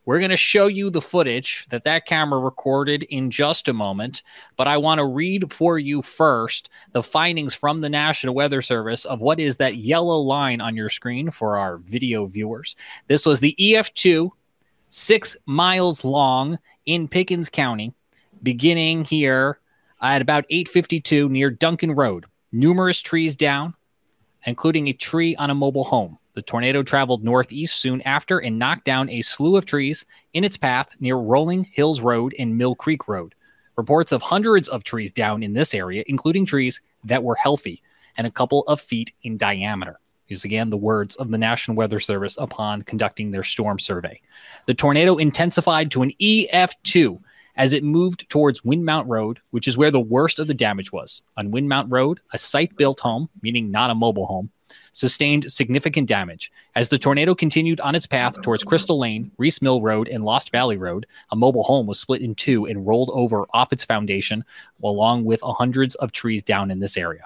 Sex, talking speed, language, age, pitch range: male, 180 wpm, English, 20-39, 115-155 Hz